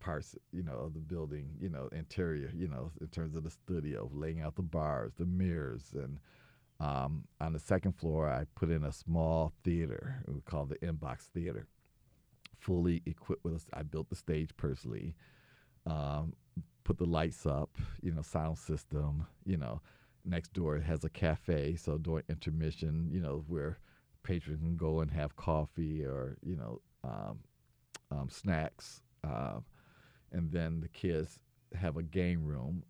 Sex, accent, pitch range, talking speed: male, American, 75-85 Hz, 165 wpm